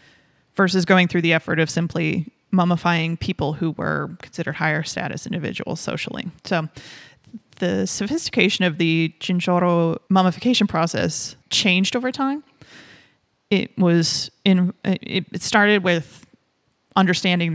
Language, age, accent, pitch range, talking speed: English, 30-49, American, 160-190 Hz, 115 wpm